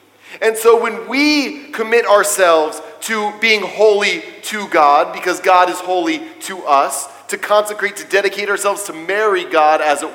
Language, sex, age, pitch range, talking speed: English, male, 40-59, 195-250 Hz, 160 wpm